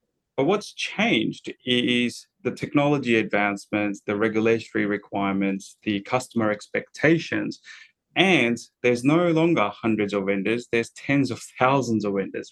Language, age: English, 20-39